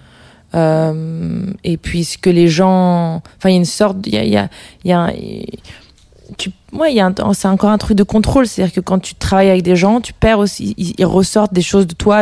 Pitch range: 155-185 Hz